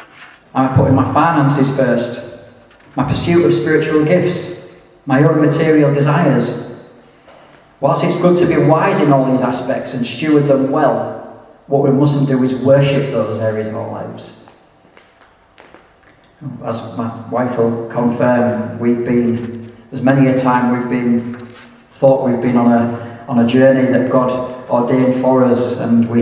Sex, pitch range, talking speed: male, 115-135 Hz, 155 wpm